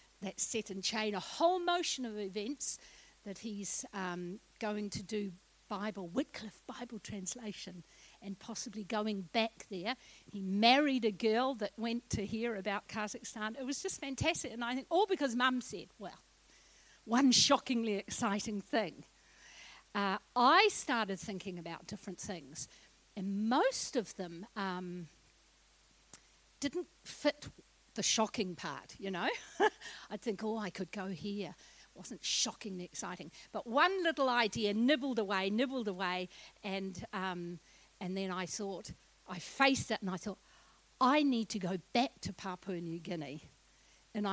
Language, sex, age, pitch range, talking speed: English, female, 50-69, 190-245 Hz, 150 wpm